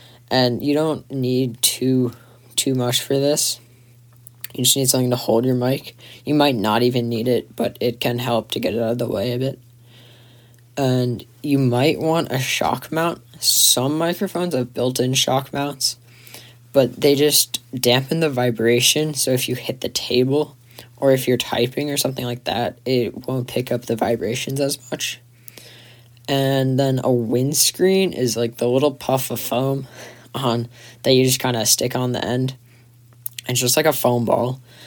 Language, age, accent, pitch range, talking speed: English, 10-29, American, 120-135 Hz, 180 wpm